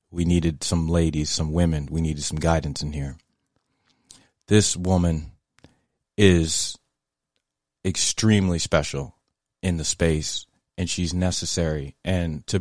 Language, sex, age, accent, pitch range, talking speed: English, male, 30-49, American, 80-100 Hz, 120 wpm